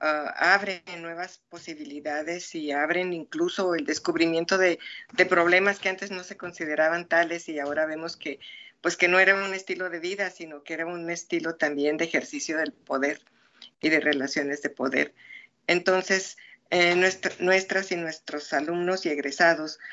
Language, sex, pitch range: Spanish, female, 150-180 Hz